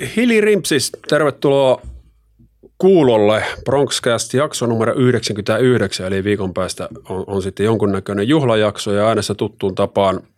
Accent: native